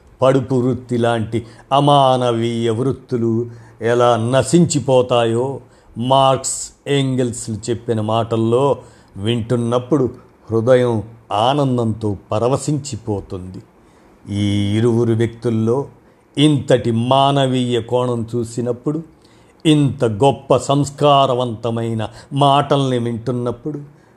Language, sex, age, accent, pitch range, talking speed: Telugu, male, 50-69, native, 115-135 Hz, 65 wpm